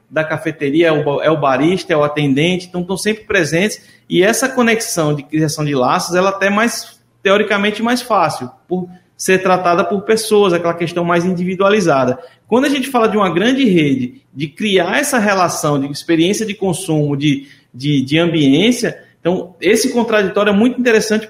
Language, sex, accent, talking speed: Portuguese, male, Brazilian, 170 wpm